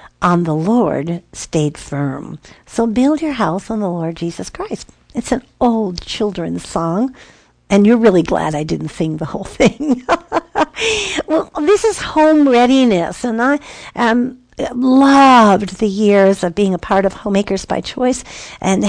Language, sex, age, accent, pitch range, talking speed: English, female, 50-69, American, 185-240 Hz, 155 wpm